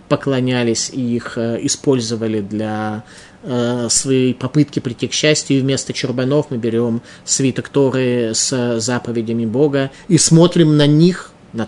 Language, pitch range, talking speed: Russian, 125-165 Hz, 130 wpm